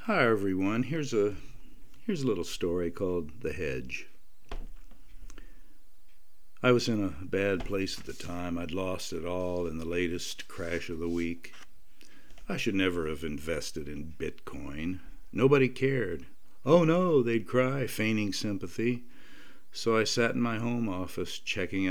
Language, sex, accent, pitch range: English, male, American, 90-120 Hz